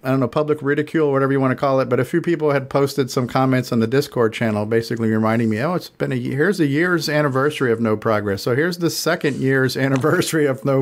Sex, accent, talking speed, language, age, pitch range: male, American, 250 wpm, English, 40-59, 110-140 Hz